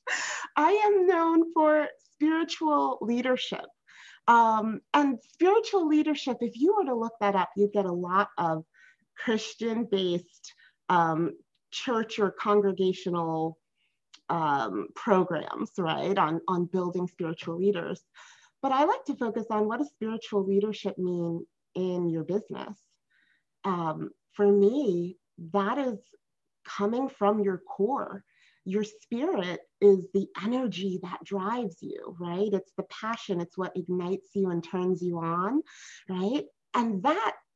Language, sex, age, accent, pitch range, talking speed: English, female, 30-49, American, 185-255 Hz, 130 wpm